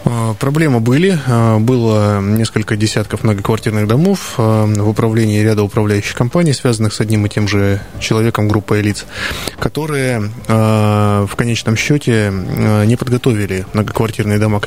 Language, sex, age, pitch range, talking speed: Russian, male, 20-39, 105-120 Hz, 125 wpm